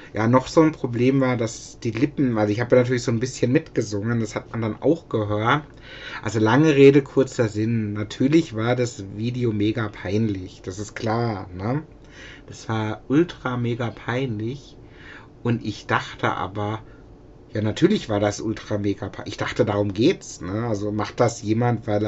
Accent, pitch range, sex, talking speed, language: German, 105-130 Hz, male, 165 wpm, German